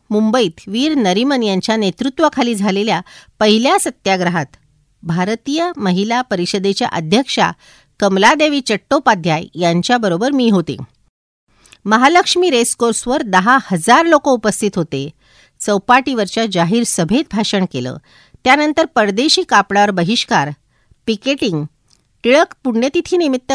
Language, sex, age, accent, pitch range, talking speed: Marathi, female, 50-69, native, 170-255 Hz, 90 wpm